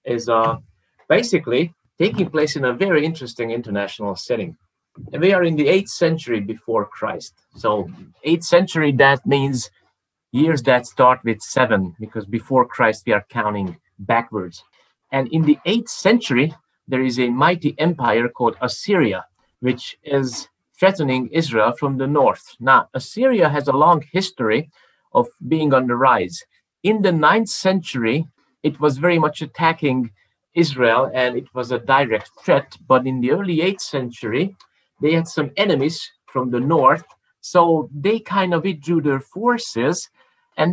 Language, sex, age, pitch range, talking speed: English, male, 30-49, 125-165 Hz, 155 wpm